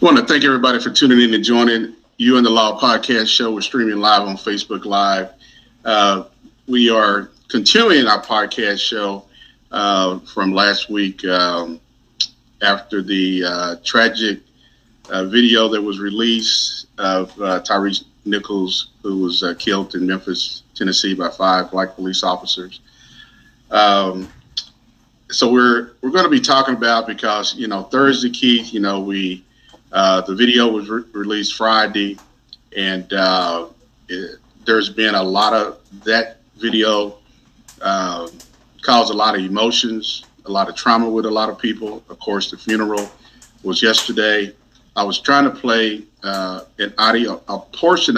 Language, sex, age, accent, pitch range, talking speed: English, male, 40-59, American, 95-120 Hz, 150 wpm